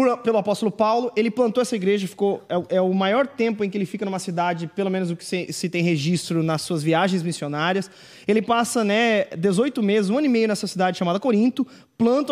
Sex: male